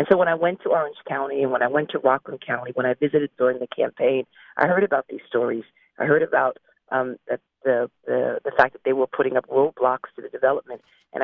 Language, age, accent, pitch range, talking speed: English, 40-59, American, 130-165 Hz, 235 wpm